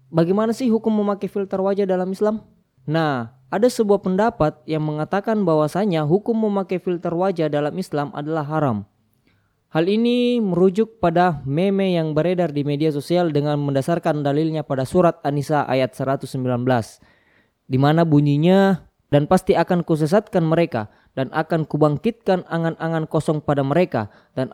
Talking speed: 135 wpm